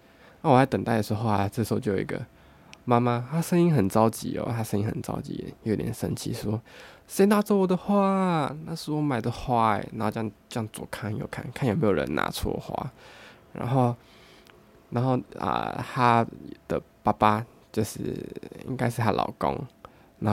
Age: 20-39